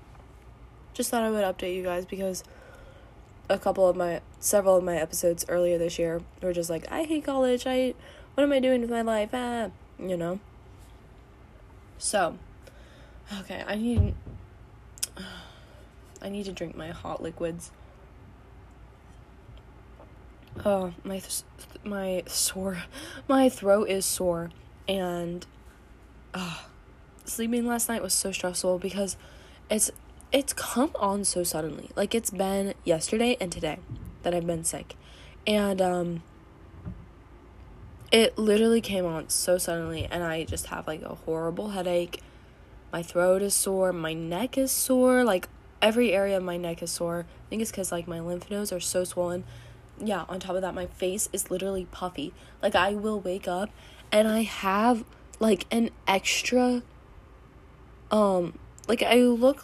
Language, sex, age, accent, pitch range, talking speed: English, female, 20-39, American, 170-210 Hz, 150 wpm